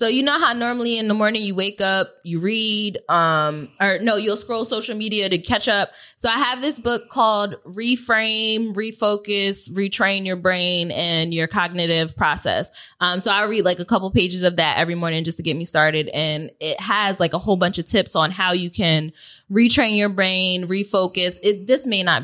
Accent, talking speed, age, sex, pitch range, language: American, 205 wpm, 20-39, female, 165-210 Hz, English